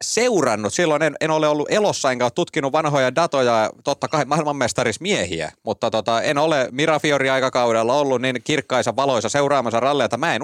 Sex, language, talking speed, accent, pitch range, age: male, Finnish, 160 wpm, native, 125-150 Hz, 30-49